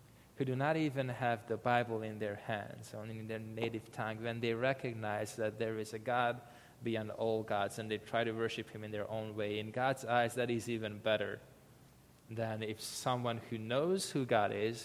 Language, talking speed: English, 205 wpm